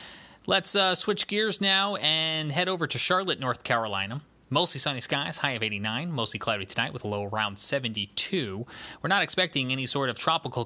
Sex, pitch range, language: male, 105-140 Hz, English